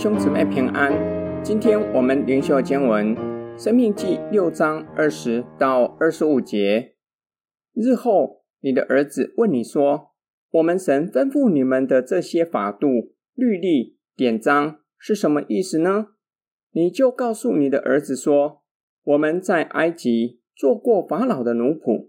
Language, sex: Chinese, male